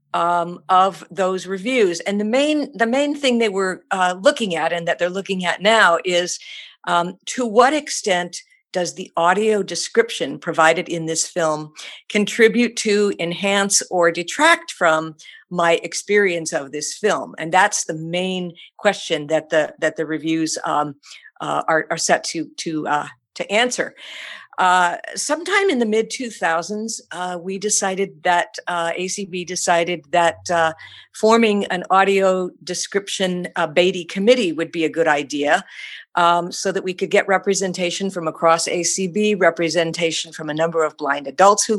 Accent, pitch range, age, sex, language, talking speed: American, 165-205 Hz, 50-69, female, English, 155 wpm